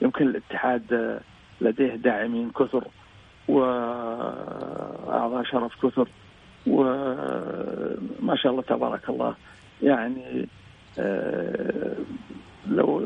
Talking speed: 70 wpm